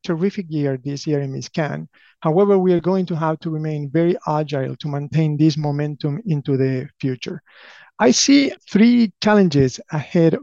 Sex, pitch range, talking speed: male, 150-190 Hz, 160 wpm